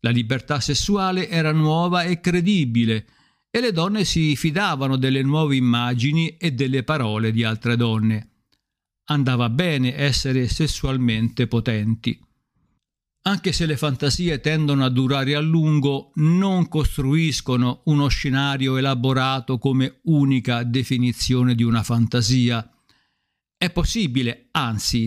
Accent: native